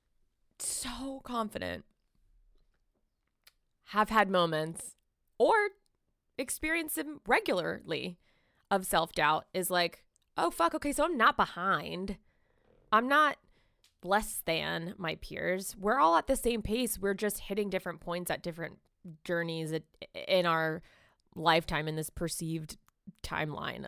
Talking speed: 120 wpm